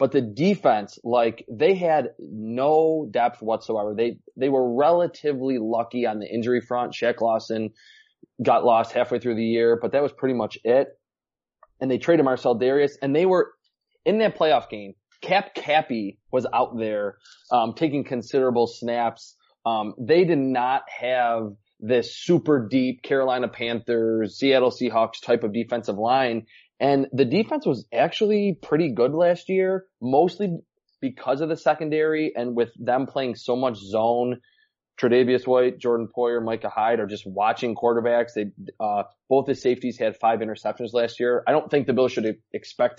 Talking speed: 165 wpm